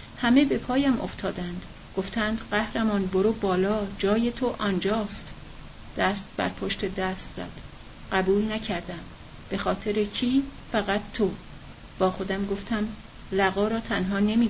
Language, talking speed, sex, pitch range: Persian, 125 wpm, female, 190-215 Hz